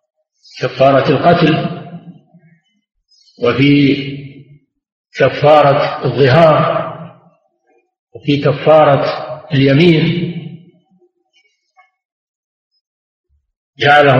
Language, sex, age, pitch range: Arabic, male, 50-69, 135-170 Hz